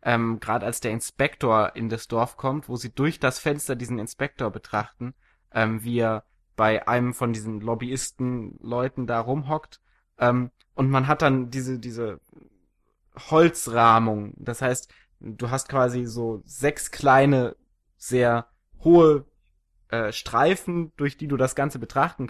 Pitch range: 115-140 Hz